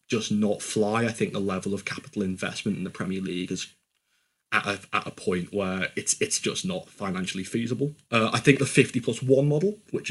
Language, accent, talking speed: English, British, 210 wpm